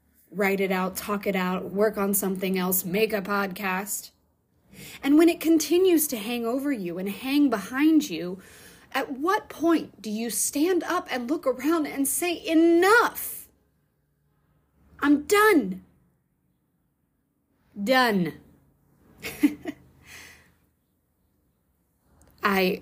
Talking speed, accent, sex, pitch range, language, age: 110 wpm, American, female, 190-265 Hz, English, 30-49